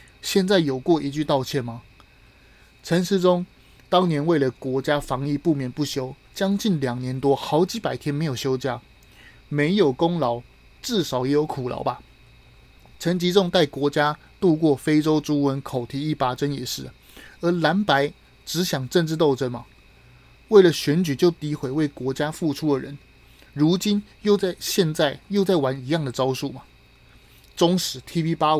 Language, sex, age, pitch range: Chinese, male, 20-39, 135-175 Hz